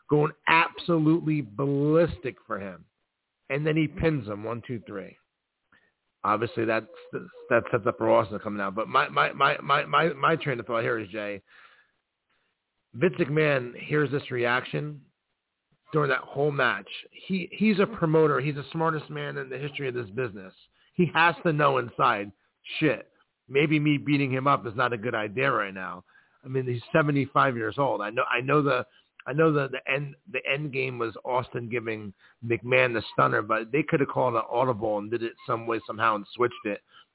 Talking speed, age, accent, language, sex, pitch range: 190 wpm, 40-59, American, English, male, 115-145 Hz